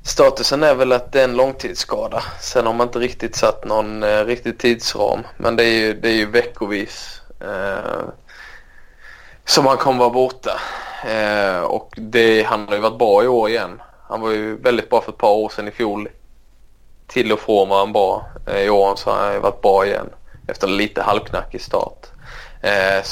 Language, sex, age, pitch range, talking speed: Swedish, male, 20-39, 110-130 Hz, 200 wpm